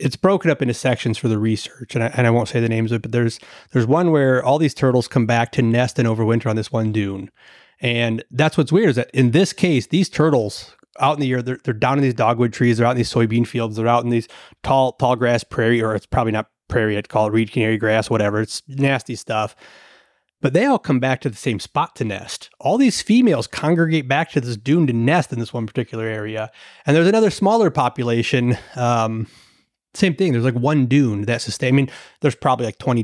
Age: 30-49